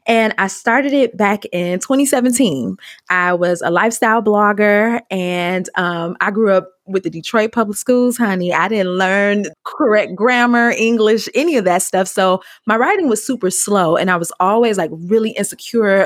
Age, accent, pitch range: 20-39, American, 180-230 Hz